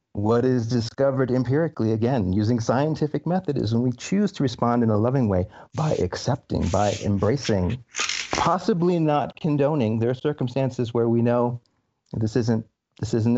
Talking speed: 155 wpm